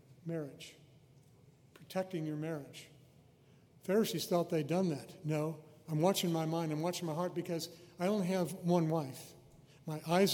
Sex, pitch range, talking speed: male, 145-175 Hz, 150 wpm